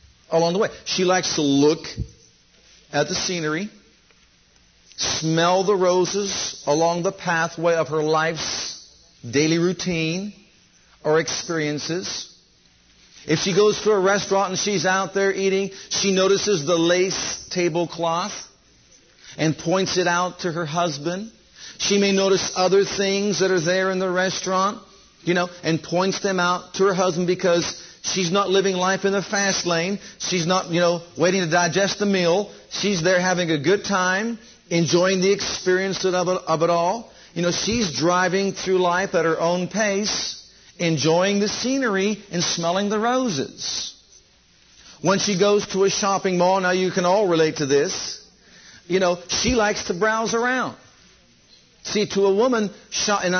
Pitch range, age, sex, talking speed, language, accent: 170-195 Hz, 50-69, male, 155 wpm, English, American